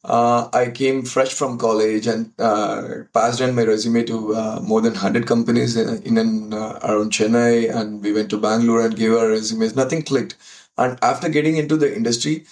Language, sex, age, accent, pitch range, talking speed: English, male, 20-39, Indian, 115-150 Hz, 190 wpm